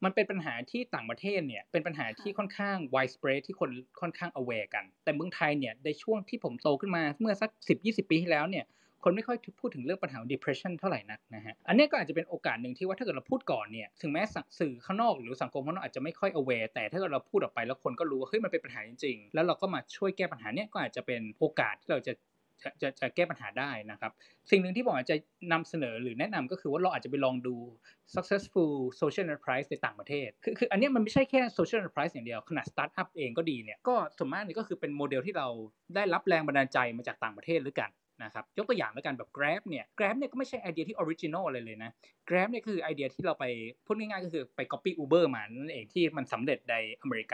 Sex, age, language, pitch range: male, 20-39, Thai, 130-195 Hz